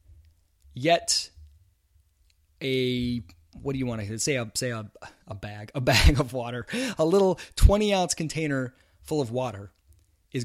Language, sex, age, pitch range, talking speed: English, male, 20-39, 90-125 Hz, 145 wpm